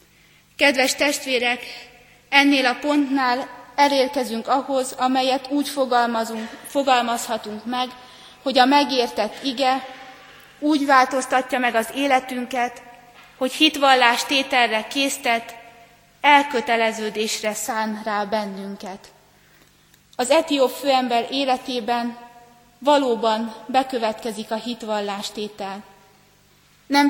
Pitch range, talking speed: 230-265 Hz, 80 wpm